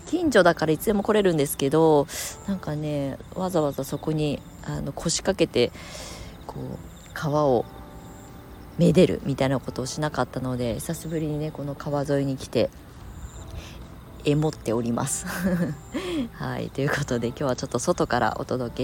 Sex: female